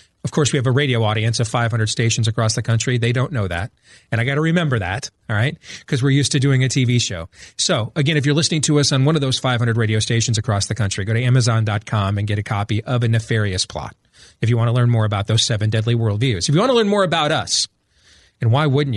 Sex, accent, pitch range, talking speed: male, American, 115-155 Hz, 265 wpm